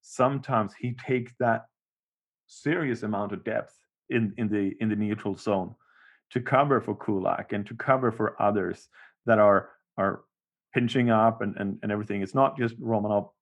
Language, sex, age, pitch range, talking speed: English, male, 30-49, 105-120 Hz, 165 wpm